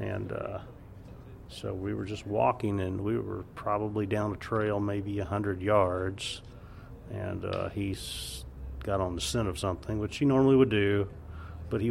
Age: 30-49